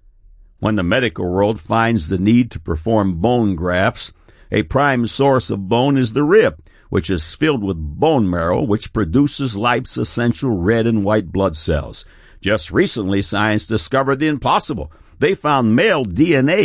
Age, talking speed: 60-79, 160 wpm